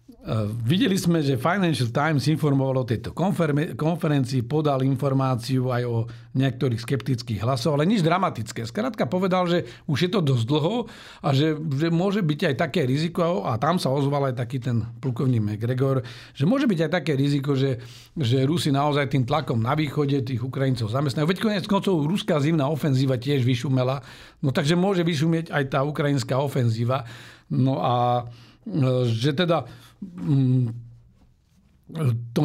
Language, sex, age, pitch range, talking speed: Slovak, male, 50-69, 125-160 Hz, 155 wpm